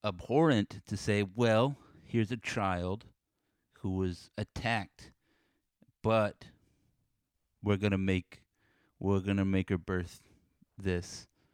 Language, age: English, 30-49